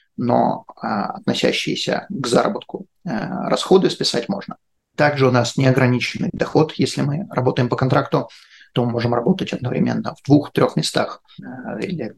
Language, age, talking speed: English, 30-49, 145 wpm